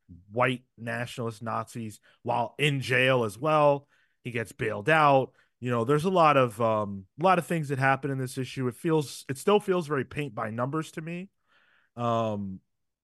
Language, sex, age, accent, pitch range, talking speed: English, male, 30-49, American, 115-150 Hz, 185 wpm